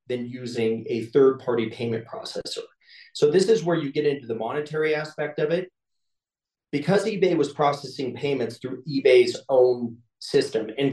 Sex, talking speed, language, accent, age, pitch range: male, 155 wpm, English, American, 30-49, 115-160 Hz